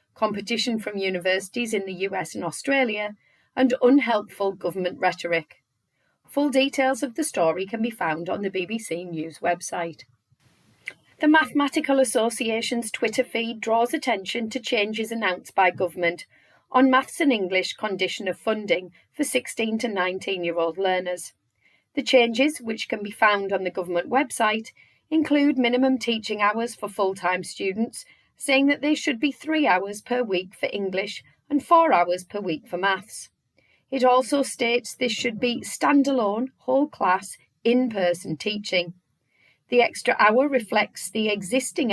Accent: British